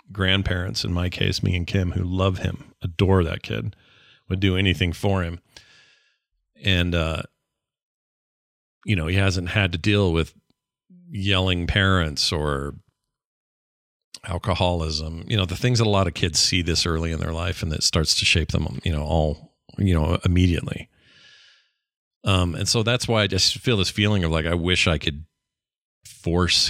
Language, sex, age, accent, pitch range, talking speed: English, male, 40-59, American, 85-100 Hz, 170 wpm